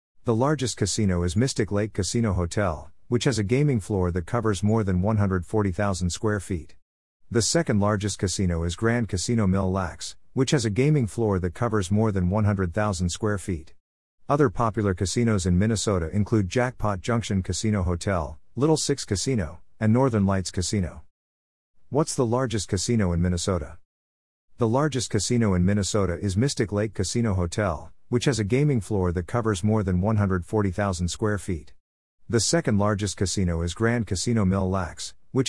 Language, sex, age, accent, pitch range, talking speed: English, male, 50-69, American, 90-115 Hz, 160 wpm